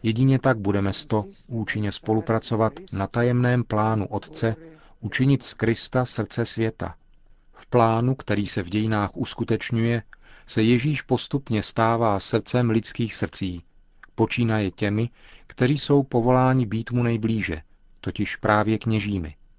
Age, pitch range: 40-59, 100-120 Hz